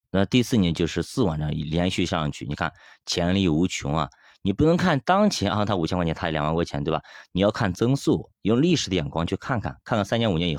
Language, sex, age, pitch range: Chinese, male, 30-49, 80-110 Hz